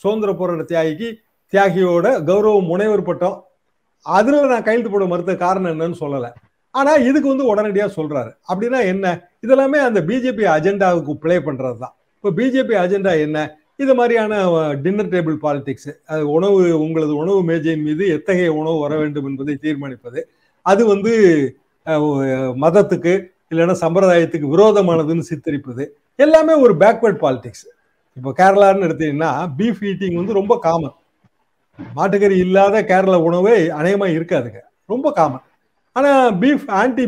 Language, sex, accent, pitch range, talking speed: Tamil, male, native, 160-220 Hz, 130 wpm